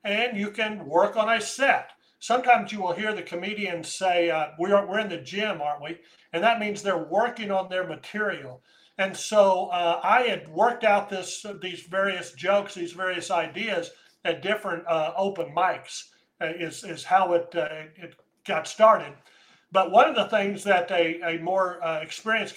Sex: male